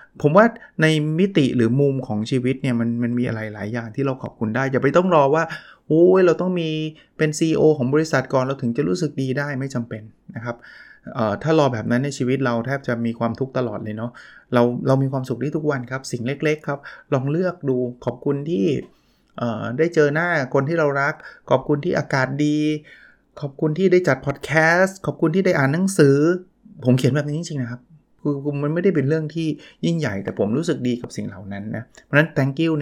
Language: Thai